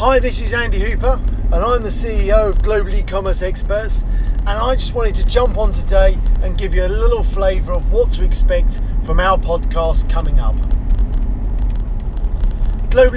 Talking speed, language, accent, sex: 170 wpm, English, British, male